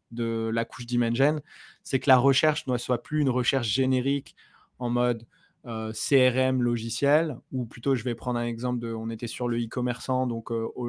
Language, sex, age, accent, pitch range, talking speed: French, male, 20-39, French, 115-130 Hz, 200 wpm